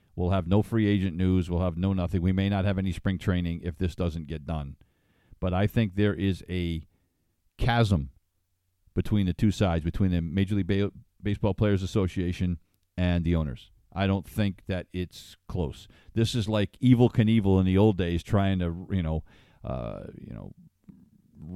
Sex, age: male, 50-69